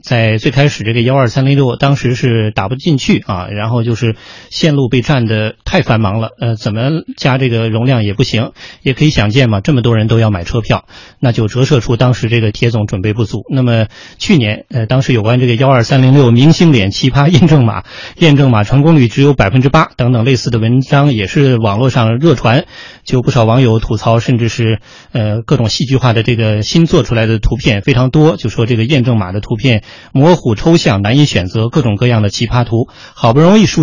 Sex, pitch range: male, 110-140 Hz